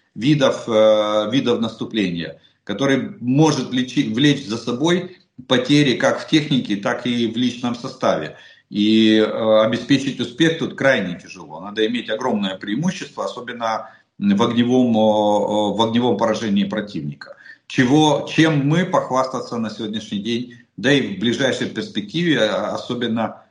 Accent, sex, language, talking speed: native, male, Russian, 115 wpm